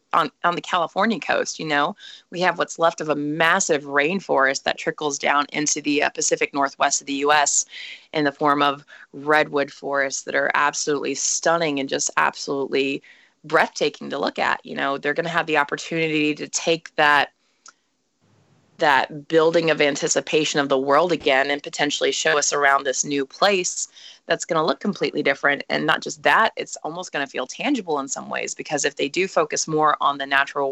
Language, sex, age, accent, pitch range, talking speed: English, female, 20-39, American, 140-155 Hz, 190 wpm